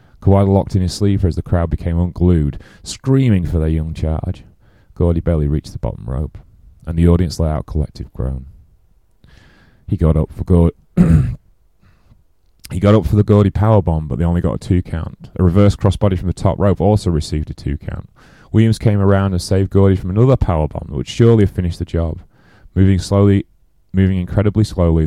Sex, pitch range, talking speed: male, 80-100 Hz, 195 wpm